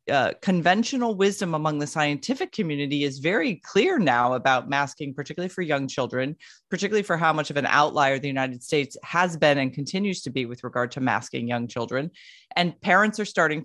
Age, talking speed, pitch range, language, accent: 30-49, 190 wpm, 145-185 Hz, English, American